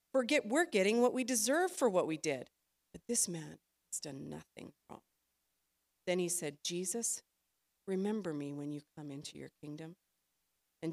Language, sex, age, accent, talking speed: English, female, 40-59, American, 165 wpm